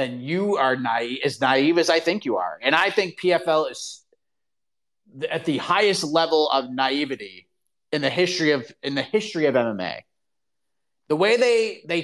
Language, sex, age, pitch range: English, male, 30-49, 160-240 Hz